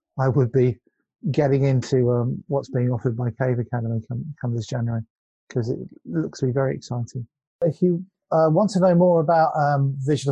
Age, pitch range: 30-49, 115-145 Hz